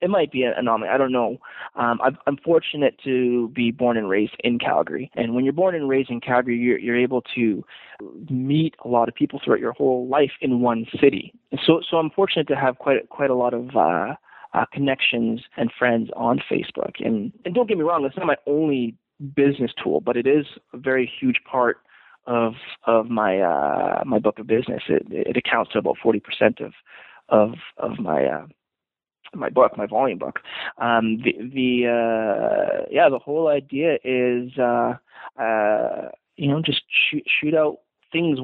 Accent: American